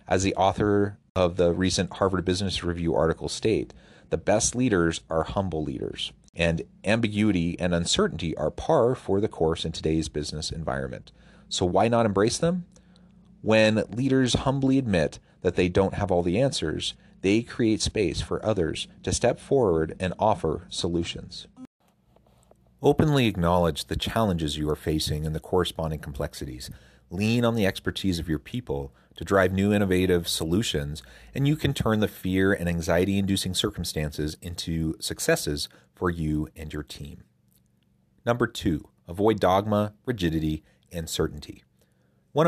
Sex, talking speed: male, 145 wpm